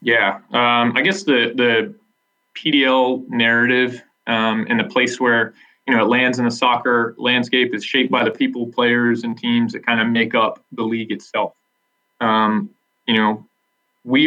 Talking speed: 175 wpm